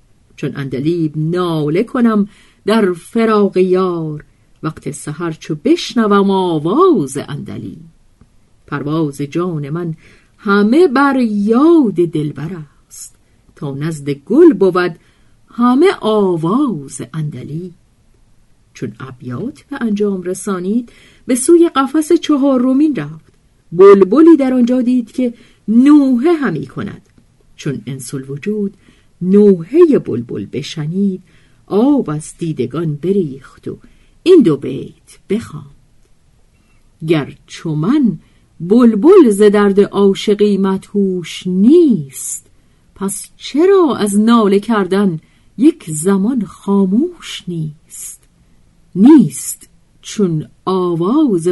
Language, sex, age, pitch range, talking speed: Persian, female, 50-69, 145-225 Hz, 95 wpm